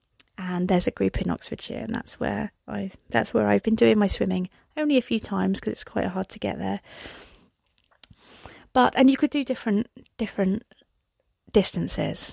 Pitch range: 190-235 Hz